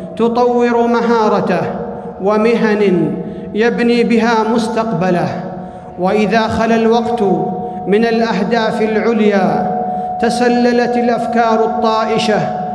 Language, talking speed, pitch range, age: Arabic, 70 wpm, 205-235 Hz, 50-69